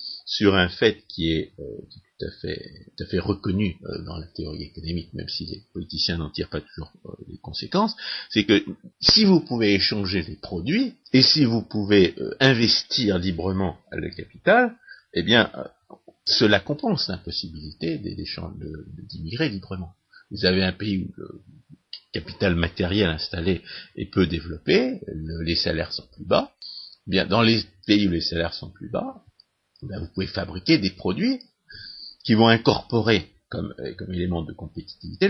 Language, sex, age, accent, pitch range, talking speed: French, male, 50-69, French, 85-105 Hz, 170 wpm